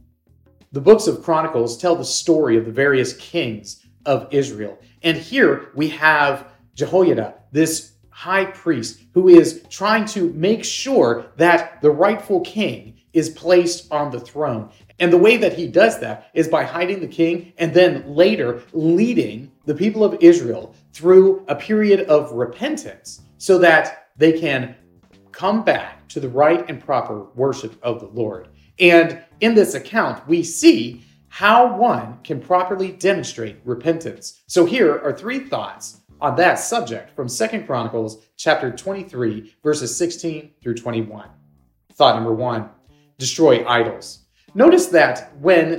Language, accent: English, American